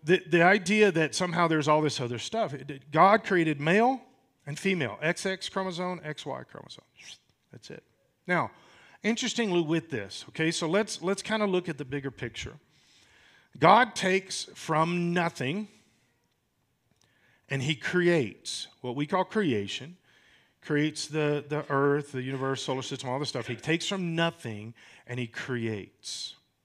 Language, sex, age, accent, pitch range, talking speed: English, male, 40-59, American, 135-180 Hz, 145 wpm